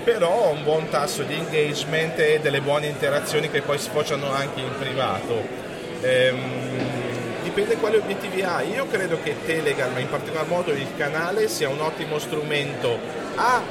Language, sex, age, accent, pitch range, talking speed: Italian, male, 40-59, native, 145-170 Hz, 160 wpm